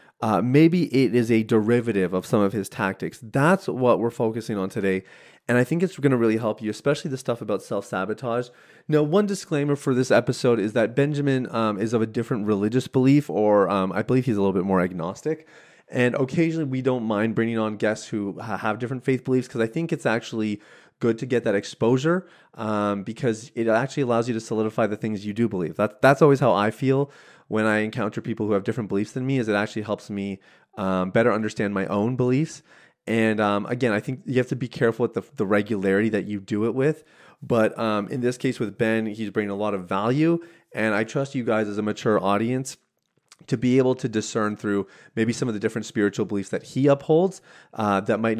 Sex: male